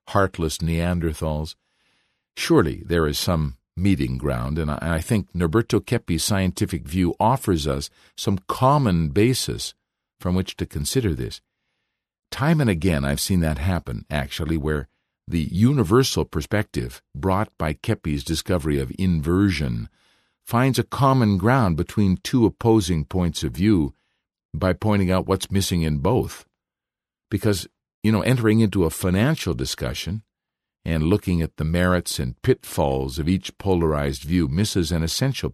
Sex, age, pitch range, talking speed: male, 50-69, 80-105 Hz, 140 wpm